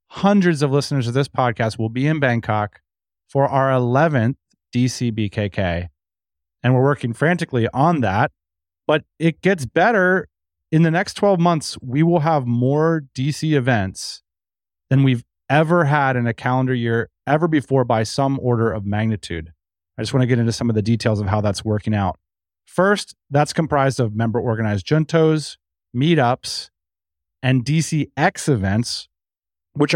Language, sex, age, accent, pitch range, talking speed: English, male, 30-49, American, 105-145 Hz, 150 wpm